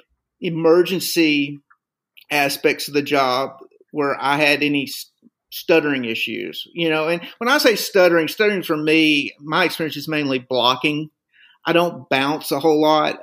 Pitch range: 150-180 Hz